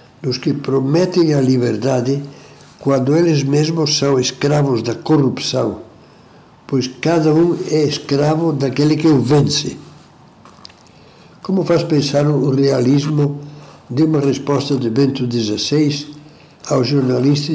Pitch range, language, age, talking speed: 125-150 Hz, Portuguese, 60-79, 115 wpm